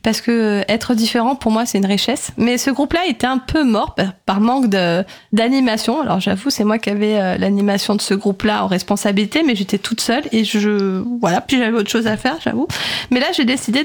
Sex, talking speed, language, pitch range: female, 215 wpm, French, 220-255 Hz